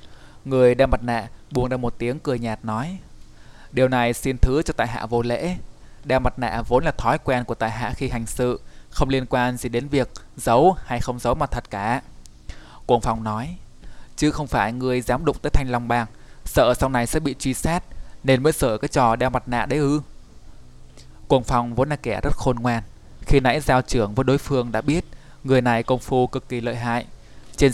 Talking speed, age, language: 220 wpm, 20-39, Vietnamese